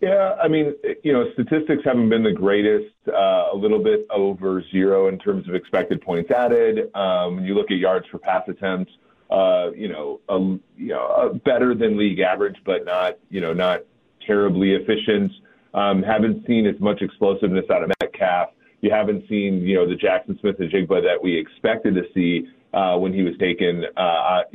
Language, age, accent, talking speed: English, 30-49, American, 190 wpm